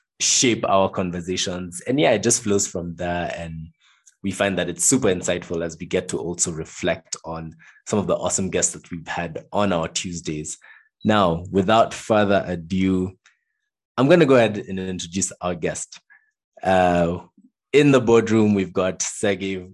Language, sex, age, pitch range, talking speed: English, male, 20-39, 85-105 Hz, 165 wpm